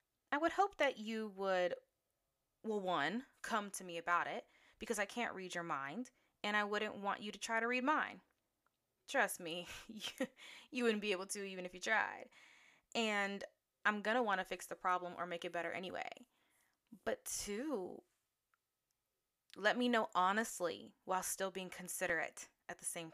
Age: 20-39